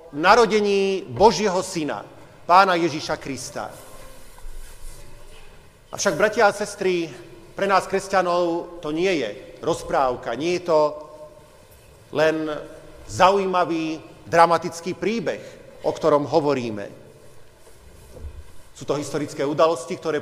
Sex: male